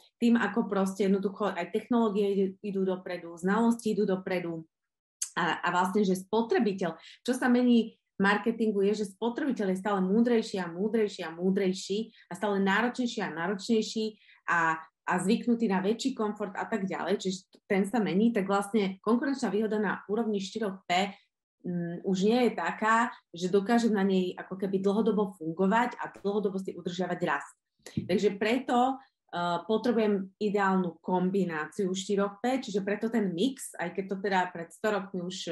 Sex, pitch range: female, 185-220 Hz